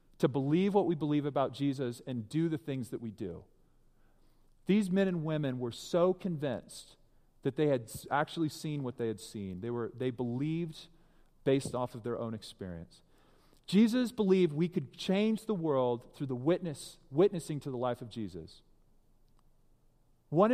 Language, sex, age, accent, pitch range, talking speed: English, male, 40-59, American, 135-200 Hz, 165 wpm